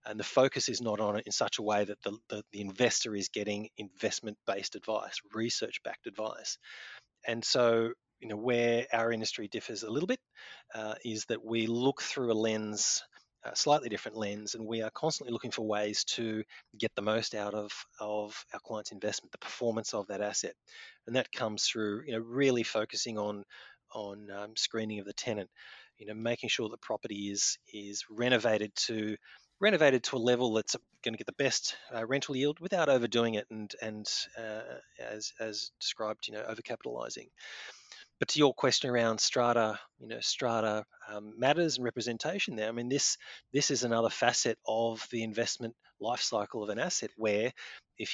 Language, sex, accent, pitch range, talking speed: English, male, Australian, 105-120 Hz, 185 wpm